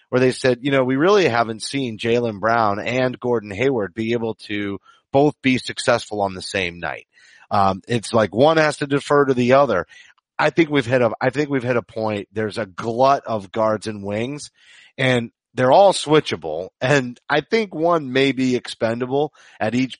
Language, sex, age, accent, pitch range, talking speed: English, male, 30-49, American, 110-140 Hz, 195 wpm